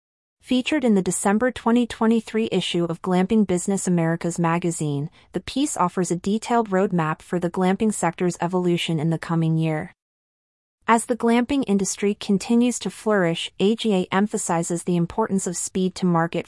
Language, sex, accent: English, female, American